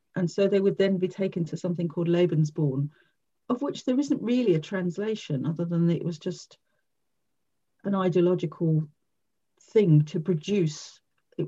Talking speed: 155 wpm